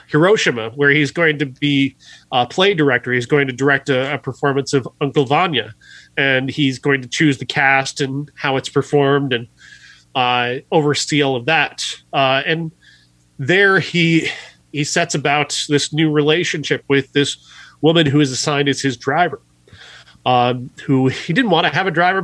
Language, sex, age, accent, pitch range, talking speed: English, male, 30-49, American, 135-160 Hz, 175 wpm